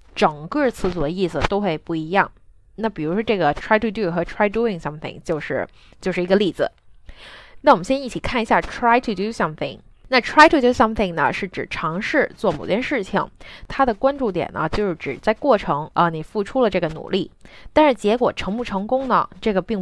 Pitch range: 175-235 Hz